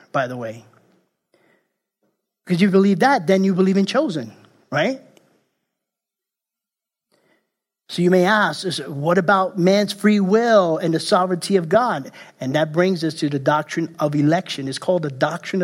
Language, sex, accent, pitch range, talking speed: English, male, American, 150-200 Hz, 155 wpm